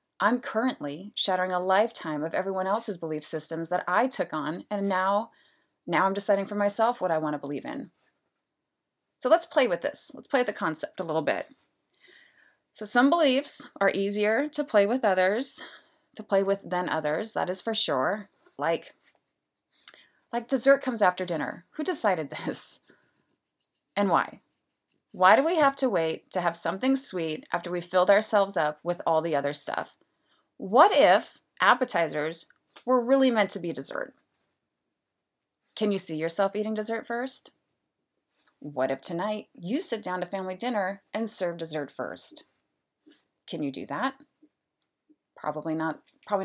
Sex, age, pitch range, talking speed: female, 30-49, 170-235 Hz, 160 wpm